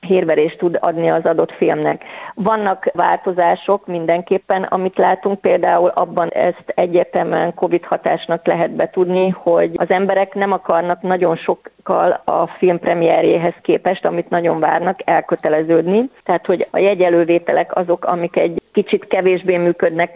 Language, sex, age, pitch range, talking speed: Hungarian, female, 30-49, 165-190 Hz, 130 wpm